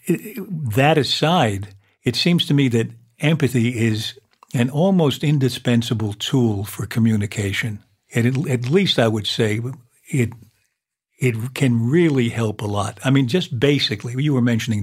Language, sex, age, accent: English, male, 60-79, American